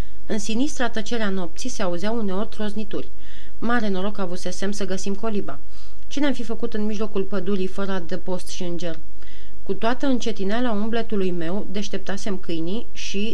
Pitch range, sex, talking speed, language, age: 185-225 Hz, female, 160 wpm, Romanian, 30-49